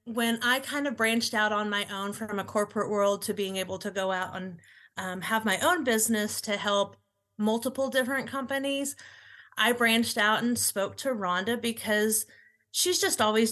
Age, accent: 30-49, American